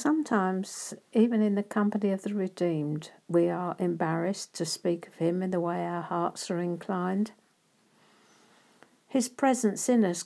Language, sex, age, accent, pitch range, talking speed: English, female, 60-79, British, 165-190 Hz, 150 wpm